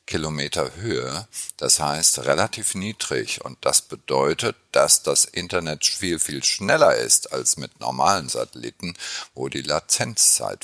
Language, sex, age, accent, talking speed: German, male, 50-69, German, 130 wpm